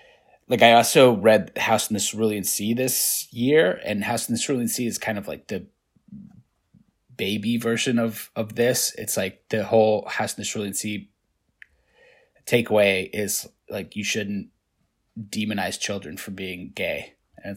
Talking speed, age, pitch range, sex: 160 wpm, 20-39, 100-115 Hz, male